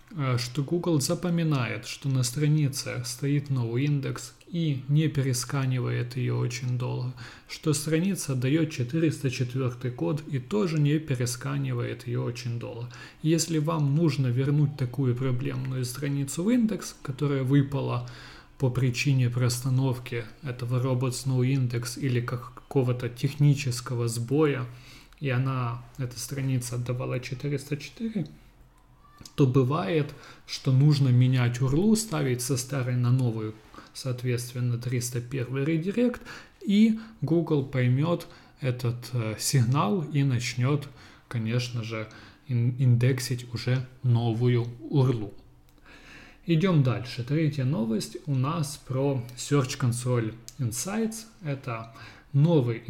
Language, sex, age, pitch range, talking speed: Russian, male, 30-49, 125-145 Hz, 105 wpm